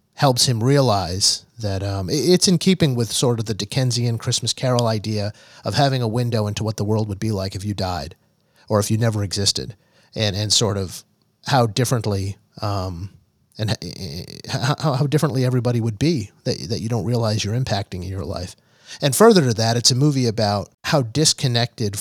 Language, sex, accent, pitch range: English, male, American, 105-125 Hz